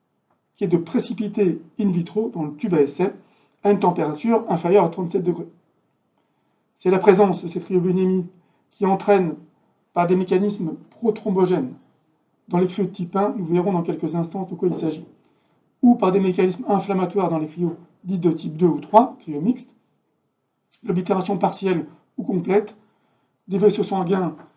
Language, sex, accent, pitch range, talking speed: French, male, French, 175-205 Hz, 165 wpm